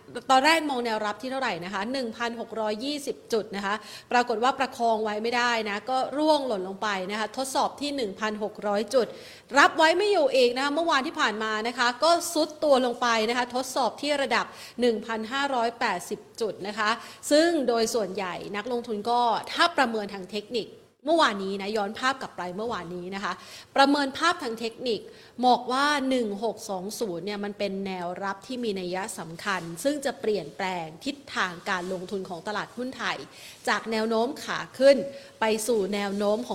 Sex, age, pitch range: female, 30-49, 205-270 Hz